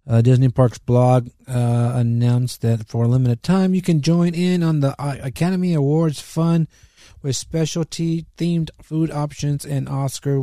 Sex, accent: male, American